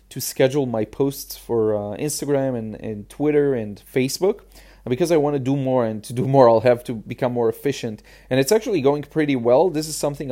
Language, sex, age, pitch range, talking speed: English, male, 30-49, 115-145 Hz, 215 wpm